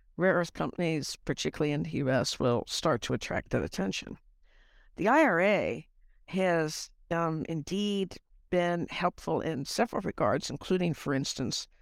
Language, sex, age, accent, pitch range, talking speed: English, female, 60-79, American, 150-175 Hz, 130 wpm